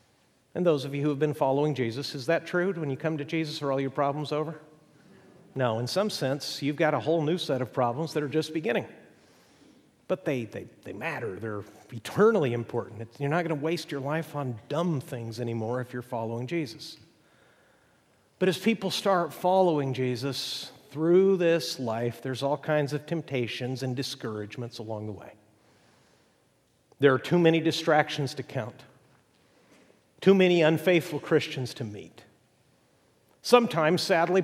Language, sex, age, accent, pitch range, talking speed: English, male, 50-69, American, 125-155 Hz, 165 wpm